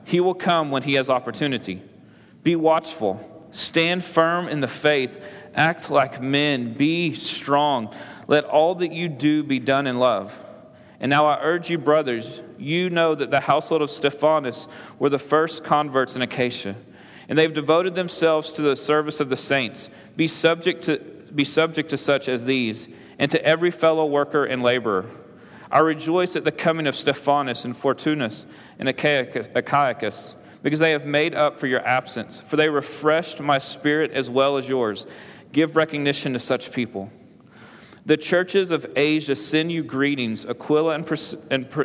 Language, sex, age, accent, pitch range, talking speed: English, male, 30-49, American, 130-160 Hz, 165 wpm